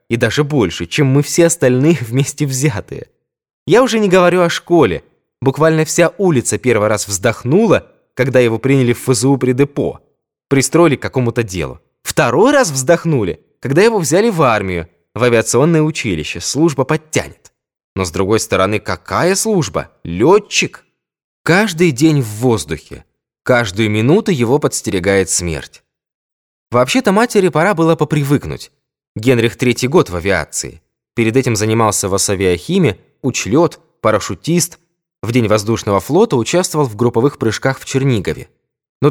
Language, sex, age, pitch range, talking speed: Russian, male, 20-39, 115-160 Hz, 135 wpm